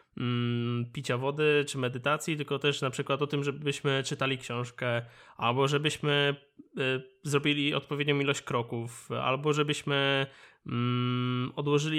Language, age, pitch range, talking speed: Polish, 20-39, 130-155 Hz, 110 wpm